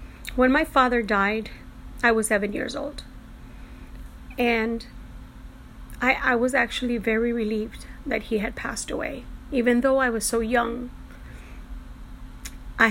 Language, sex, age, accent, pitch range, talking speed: English, female, 40-59, American, 210-235 Hz, 130 wpm